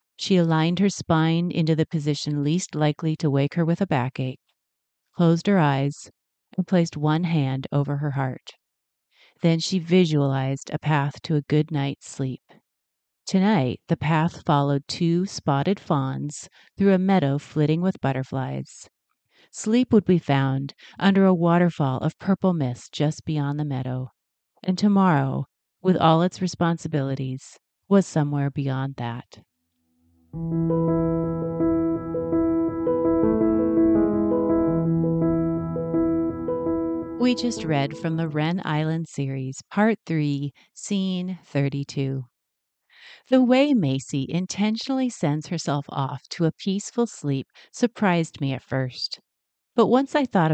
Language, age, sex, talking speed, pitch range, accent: English, 40-59, female, 120 wpm, 140-180 Hz, American